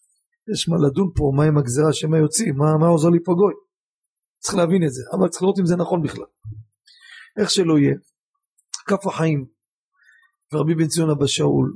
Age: 40-59